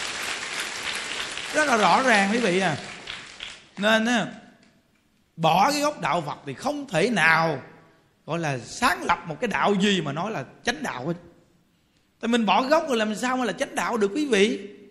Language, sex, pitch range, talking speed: Vietnamese, male, 170-235 Hz, 175 wpm